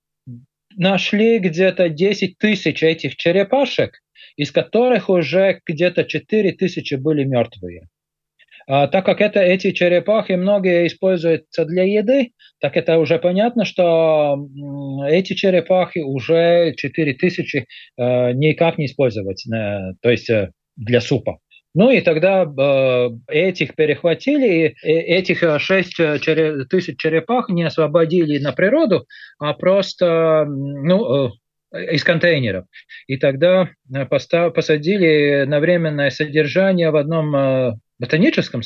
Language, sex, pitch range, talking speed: Russian, male, 135-180 Hz, 110 wpm